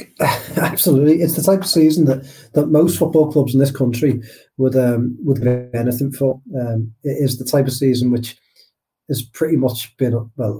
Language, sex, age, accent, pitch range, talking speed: English, male, 30-49, British, 115-135 Hz, 185 wpm